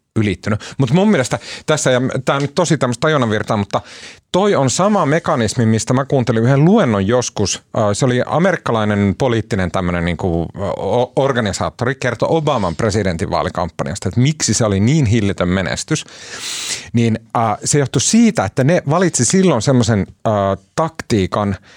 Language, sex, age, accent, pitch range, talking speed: Finnish, male, 40-59, native, 105-145 Hz, 130 wpm